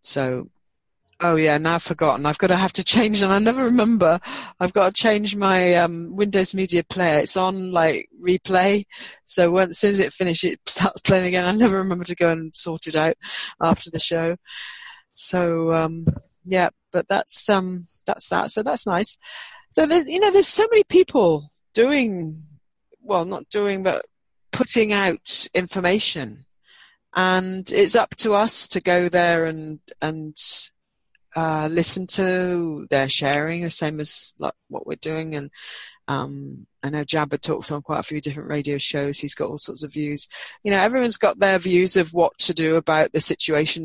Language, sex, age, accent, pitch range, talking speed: English, female, 40-59, British, 150-190 Hz, 180 wpm